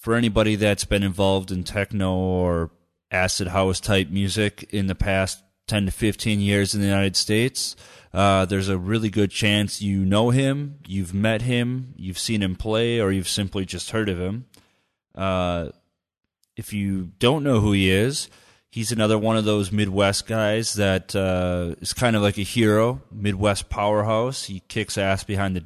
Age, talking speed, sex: 30-49, 180 wpm, male